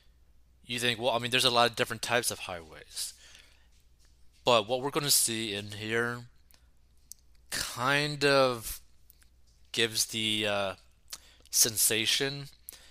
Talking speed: 125 wpm